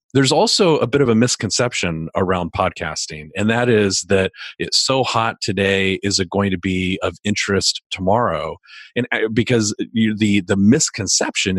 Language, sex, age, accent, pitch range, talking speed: English, male, 40-59, American, 95-120 Hz, 160 wpm